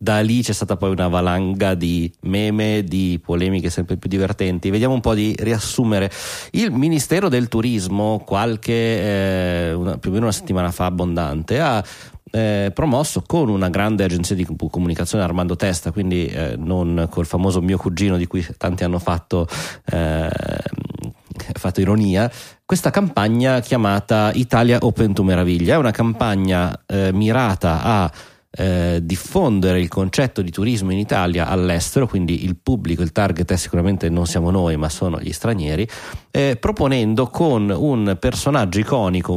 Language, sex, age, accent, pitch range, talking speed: Italian, male, 30-49, native, 90-115 Hz, 150 wpm